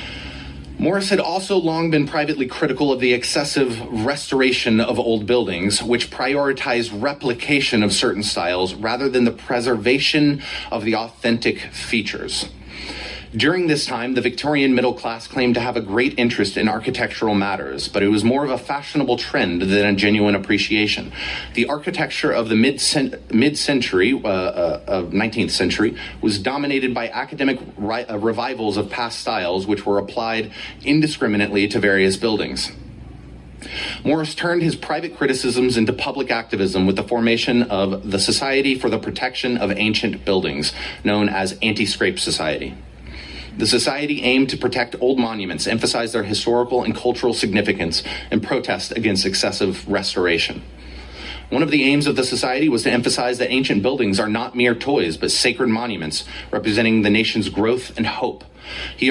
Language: English